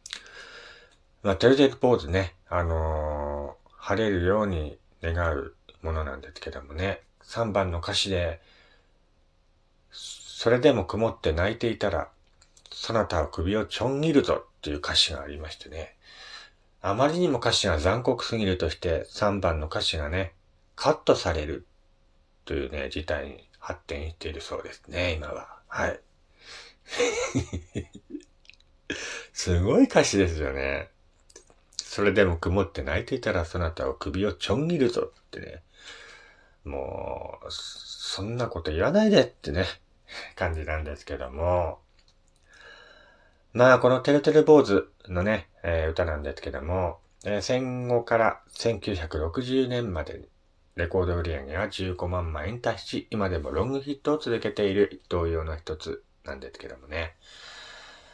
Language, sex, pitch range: Japanese, male, 80-115 Hz